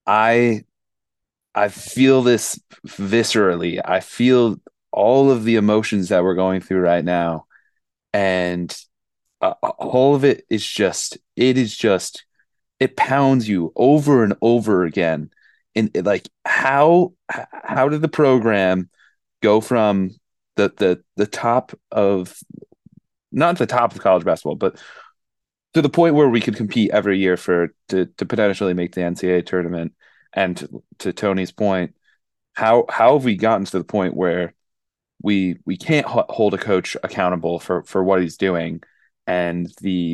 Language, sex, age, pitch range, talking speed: English, male, 30-49, 90-115 Hz, 145 wpm